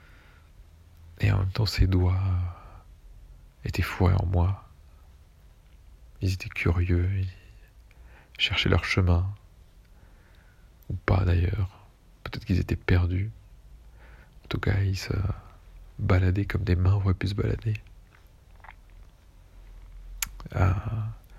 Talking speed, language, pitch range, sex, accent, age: 105 wpm, French, 90-105 Hz, male, French, 40-59